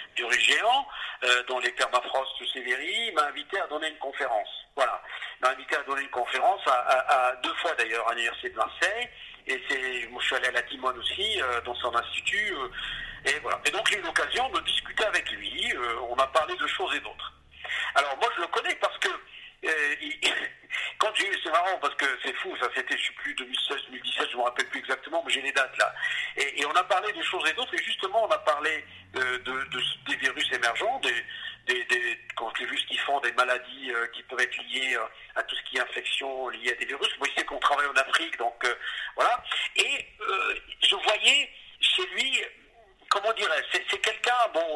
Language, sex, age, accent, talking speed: French, male, 50-69, French, 220 wpm